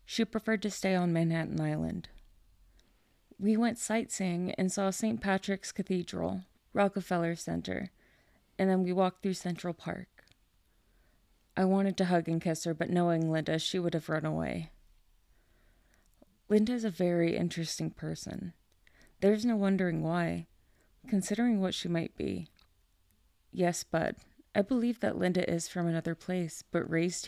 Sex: female